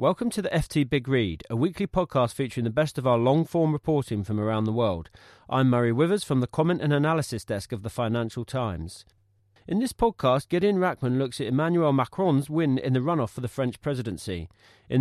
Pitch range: 120-160 Hz